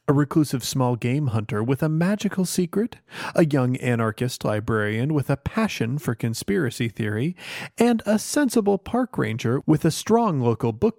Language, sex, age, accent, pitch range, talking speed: English, male, 30-49, American, 120-175 Hz, 160 wpm